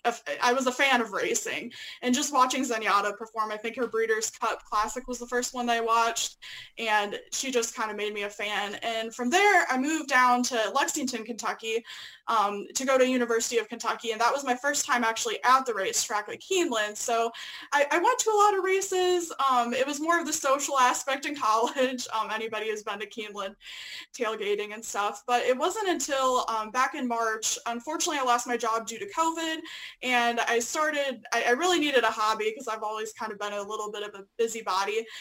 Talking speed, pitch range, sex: 215 wpm, 220-280 Hz, female